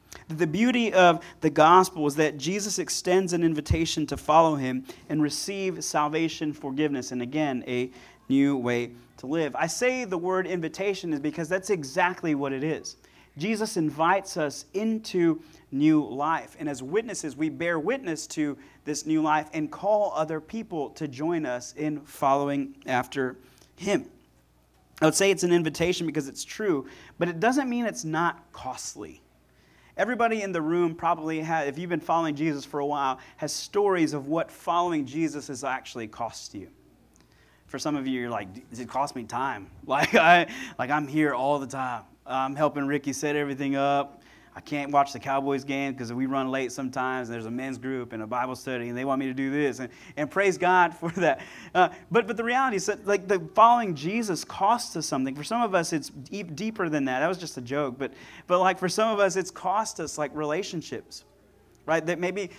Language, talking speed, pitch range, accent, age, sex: English, 195 wpm, 140-180 Hz, American, 30-49, male